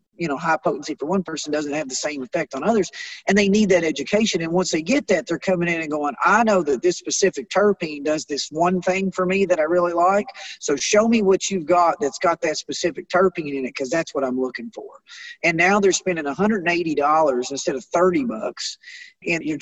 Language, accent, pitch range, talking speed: English, American, 155-205 Hz, 230 wpm